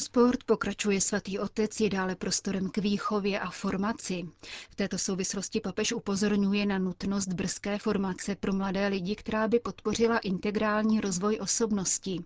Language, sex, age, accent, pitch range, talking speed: Czech, female, 30-49, native, 185-210 Hz, 140 wpm